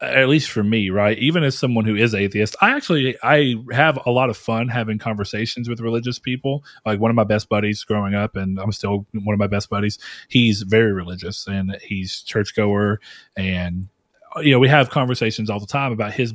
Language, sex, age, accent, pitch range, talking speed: English, male, 30-49, American, 105-125 Hz, 215 wpm